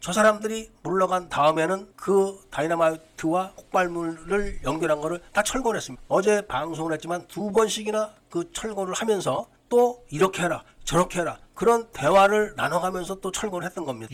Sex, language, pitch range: male, Korean, 155-200 Hz